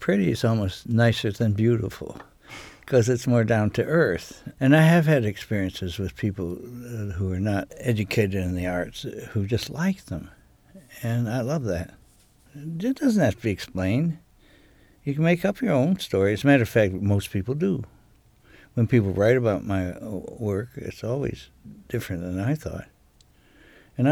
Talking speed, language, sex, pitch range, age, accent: 170 wpm, English, male, 95-125 Hz, 60-79, American